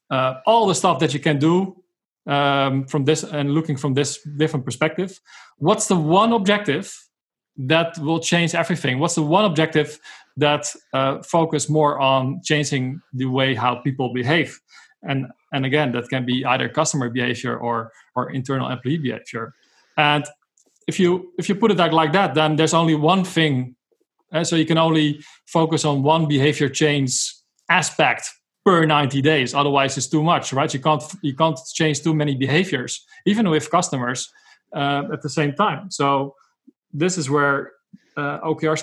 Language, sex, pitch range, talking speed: English, male, 135-160 Hz, 170 wpm